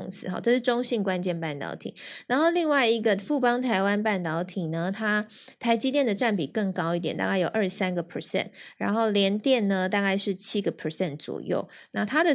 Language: Chinese